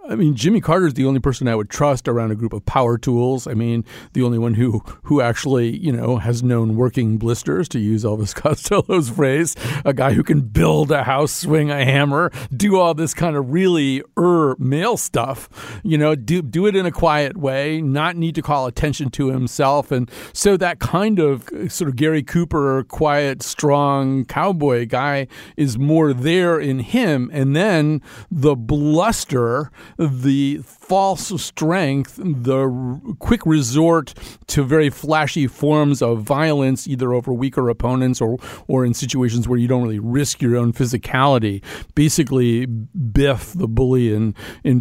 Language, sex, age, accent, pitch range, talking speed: English, male, 50-69, American, 125-155 Hz, 170 wpm